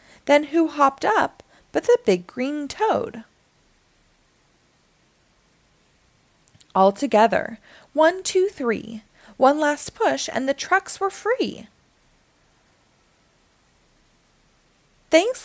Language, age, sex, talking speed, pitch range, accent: English, 20-39, female, 80 wpm, 225-360 Hz, American